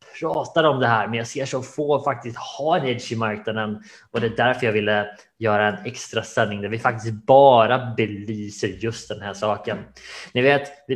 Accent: Norwegian